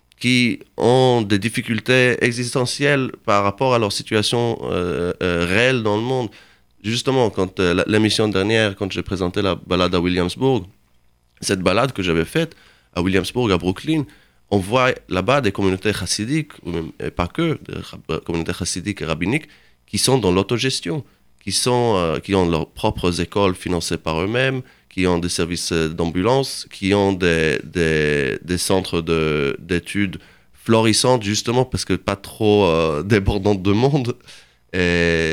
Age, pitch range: 30-49, 80-110 Hz